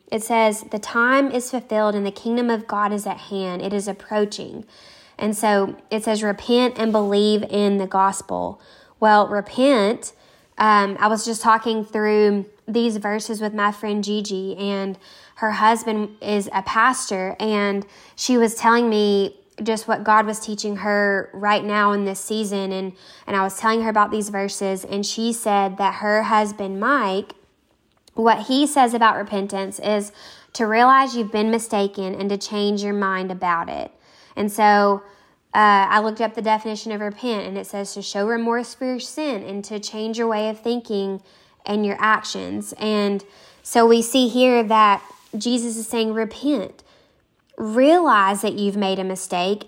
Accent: American